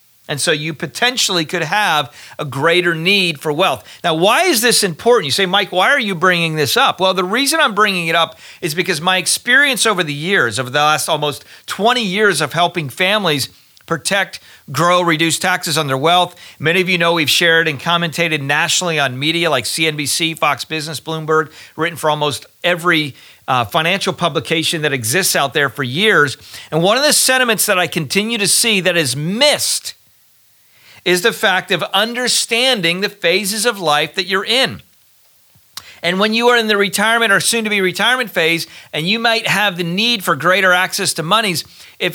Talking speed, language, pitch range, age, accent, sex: 190 wpm, English, 155-205 Hz, 40-59, American, male